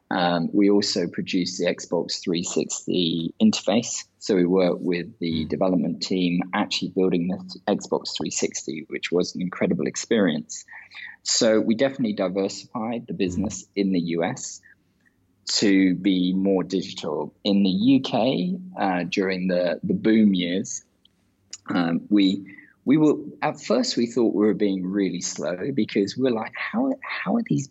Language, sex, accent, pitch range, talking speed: English, male, British, 90-115 Hz, 145 wpm